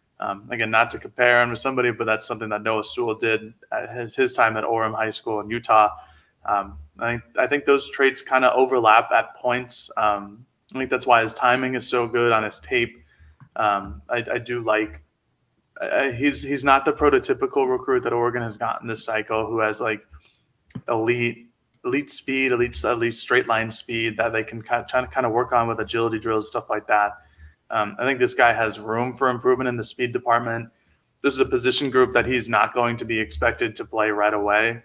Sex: male